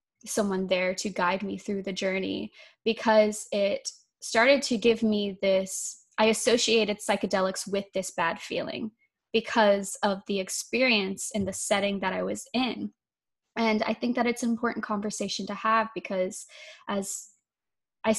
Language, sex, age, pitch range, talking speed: English, female, 10-29, 200-230 Hz, 150 wpm